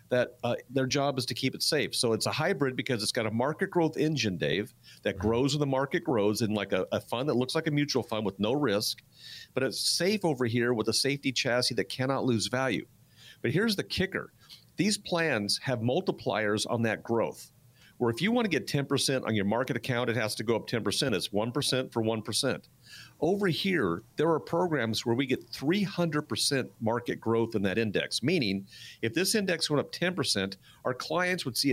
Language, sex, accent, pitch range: English, male, American, 115-145 Hz